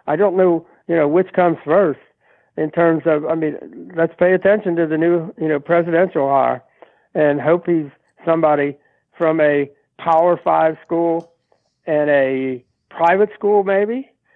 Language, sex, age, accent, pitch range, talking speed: English, male, 60-79, American, 145-185 Hz, 155 wpm